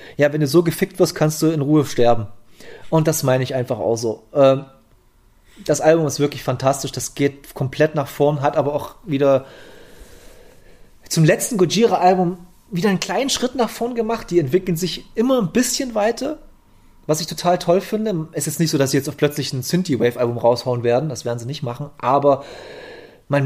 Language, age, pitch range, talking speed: German, 30-49, 125-160 Hz, 190 wpm